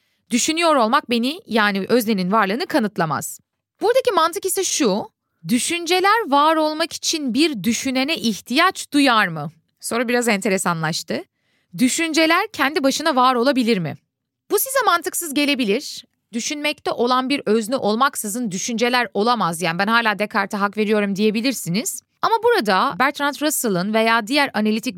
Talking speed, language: 130 wpm, Turkish